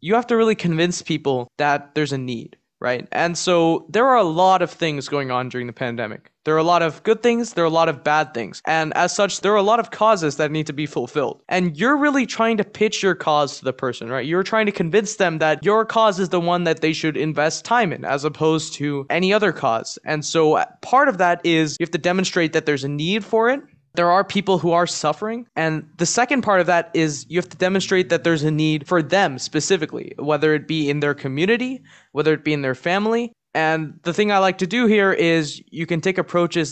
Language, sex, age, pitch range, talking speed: English, male, 20-39, 150-190 Hz, 250 wpm